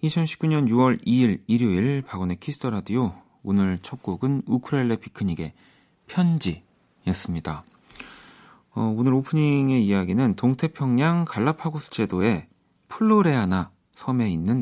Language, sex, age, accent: Korean, male, 40-59, native